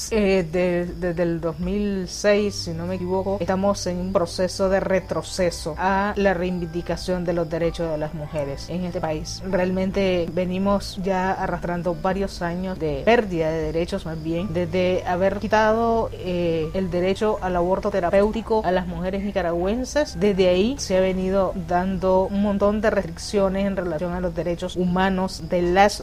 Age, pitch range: 30-49, 175-205 Hz